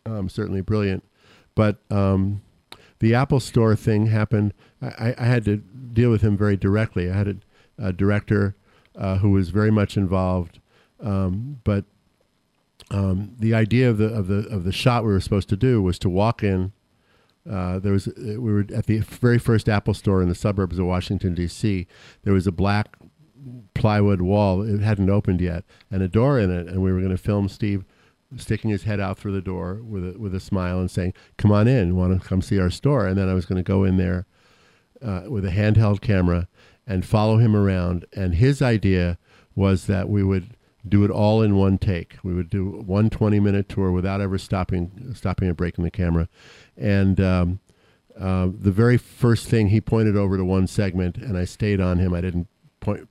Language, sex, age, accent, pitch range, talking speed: English, male, 50-69, American, 95-110 Hz, 205 wpm